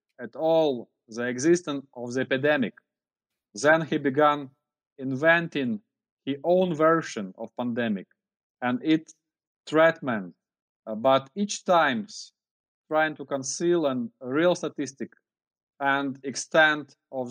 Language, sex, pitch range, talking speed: English, male, 130-165 Hz, 110 wpm